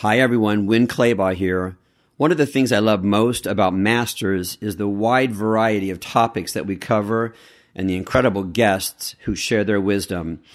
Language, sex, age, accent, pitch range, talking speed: English, male, 50-69, American, 100-125 Hz, 175 wpm